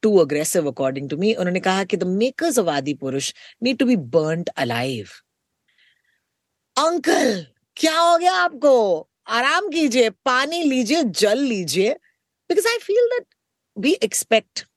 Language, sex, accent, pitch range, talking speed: Hindi, female, native, 160-250 Hz, 110 wpm